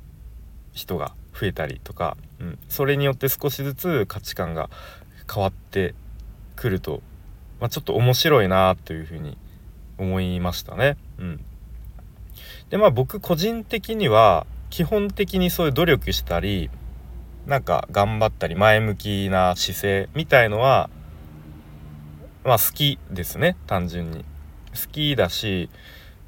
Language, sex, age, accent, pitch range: Japanese, male, 40-59, native, 80-125 Hz